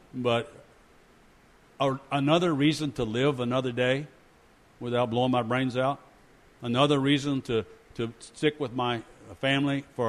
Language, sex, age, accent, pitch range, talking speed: English, male, 50-69, American, 110-135 Hz, 125 wpm